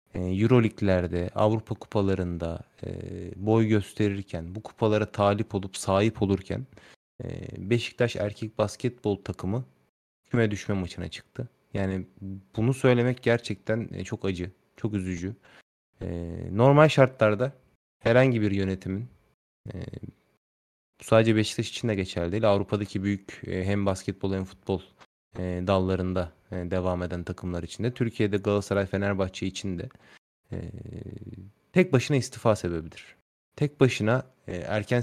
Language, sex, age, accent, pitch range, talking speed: Turkish, male, 30-49, native, 95-120 Hz, 105 wpm